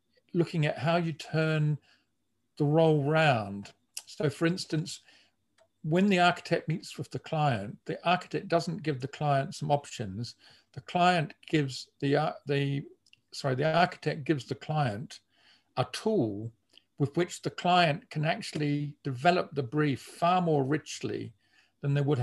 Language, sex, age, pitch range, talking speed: English, male, 50-69, 130-160 Hz, 145 wpm